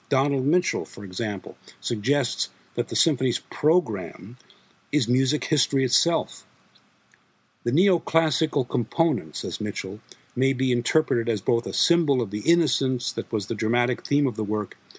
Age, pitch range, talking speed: 60-79, 115-145 Hz, 145 wpm